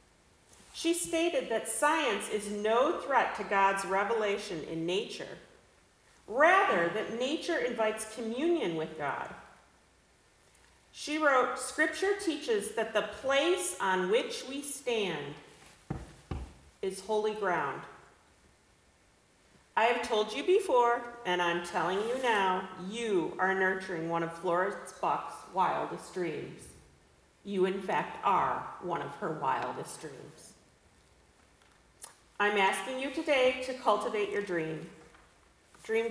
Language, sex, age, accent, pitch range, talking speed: English, female, 40-59, American, 185-260 Hz, 115 wpm